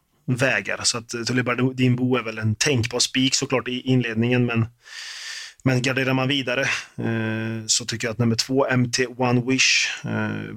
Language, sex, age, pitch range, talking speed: Swedish, male, 30-49, 110-130 Hz, 180 wpm